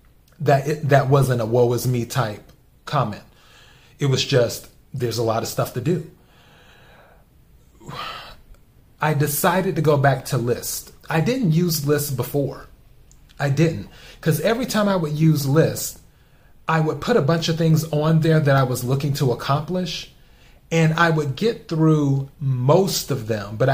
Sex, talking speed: male, 165 wpm